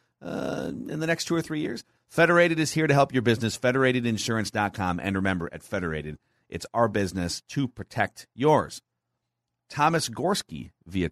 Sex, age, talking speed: male, 40-59, 155 wpm